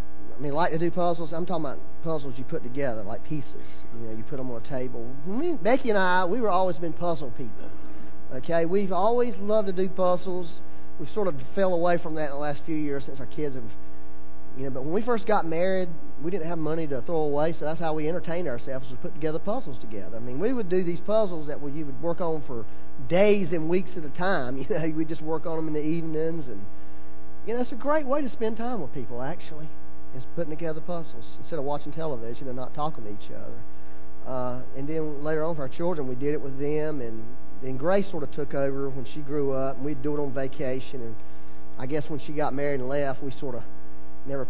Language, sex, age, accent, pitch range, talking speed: English, male, 40-59, American, 125-170 Hz, 250 wpm